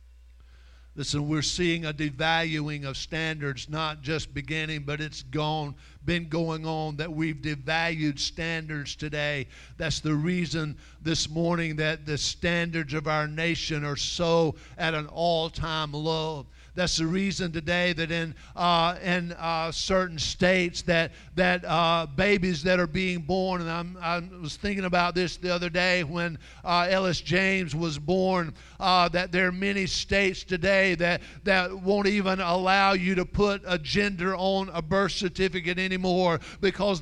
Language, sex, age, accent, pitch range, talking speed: English, male, 50-69, American, 160-195 Hz, 155 wpm